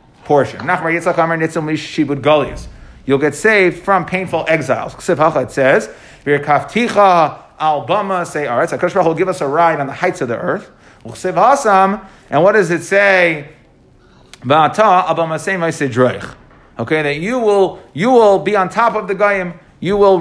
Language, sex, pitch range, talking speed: English, male, 145-195 Hz, 125 wpm